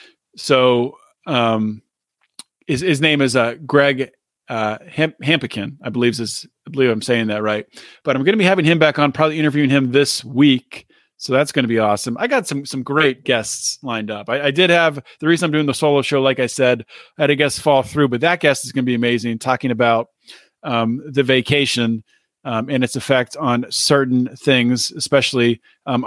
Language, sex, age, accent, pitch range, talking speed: English, male, 30-49, American, 120-150 Hz, 205 wpm